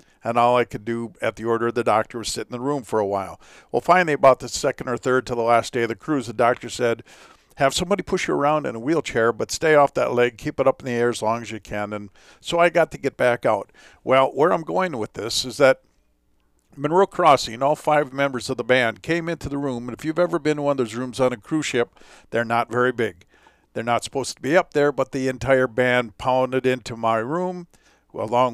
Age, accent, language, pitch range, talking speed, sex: 50-69, American, English, 115-145 Hz, 255 wpm, male